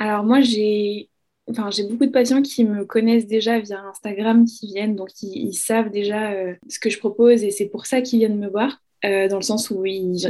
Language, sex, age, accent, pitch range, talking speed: French, female, 20-39, French, 195-230 Hz, 220 wpm